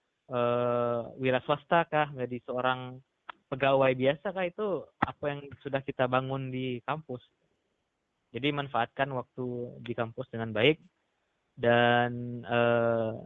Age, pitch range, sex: 20-39, 120-140 Hz, male